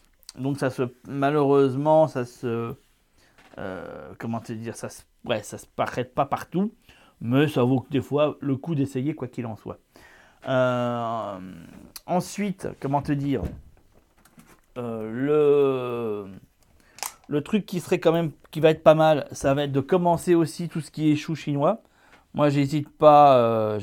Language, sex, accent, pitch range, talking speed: French, male, French, 120-155 Hz, 160 wpm